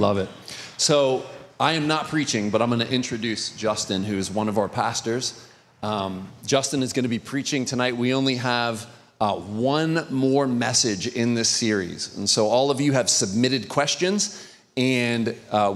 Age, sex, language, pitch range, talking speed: 30-49, male, English, 110-140 Hz, 180 wpm